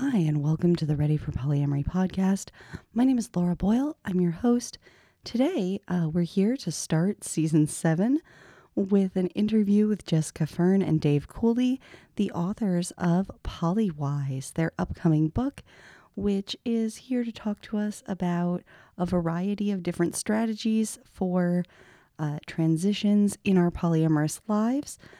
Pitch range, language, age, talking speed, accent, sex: 170-230 Hz, English, 30-49, 145 wpm, American, female